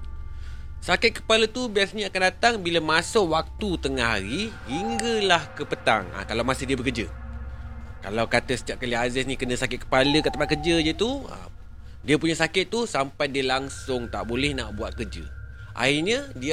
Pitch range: 115-180 Hz